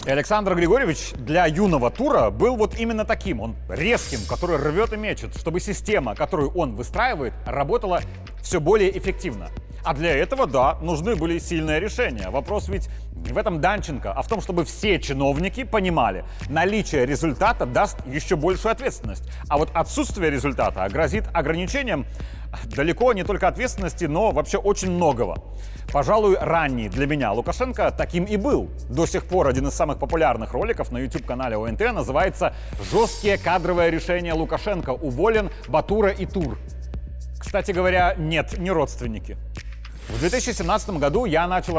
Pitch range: 135-200 Hz